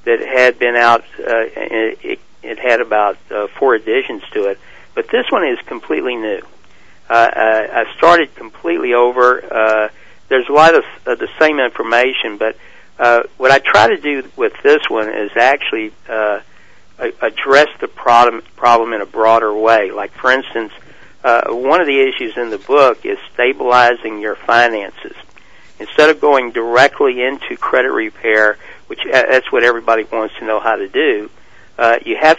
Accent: American